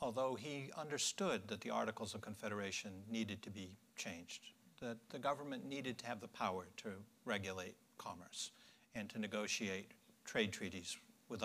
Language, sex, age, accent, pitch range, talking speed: English, male, 60-79, American, 110-185 Hz, 150 wpm